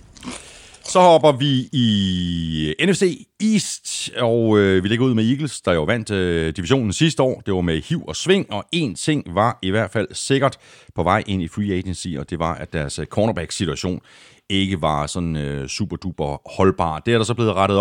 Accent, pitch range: native, 85-115 Hz